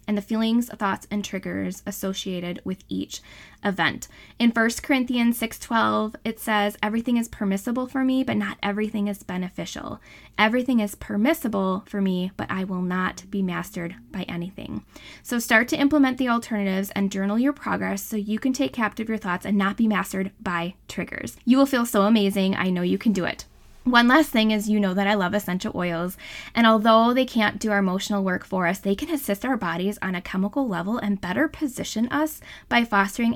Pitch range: 195-235 Hz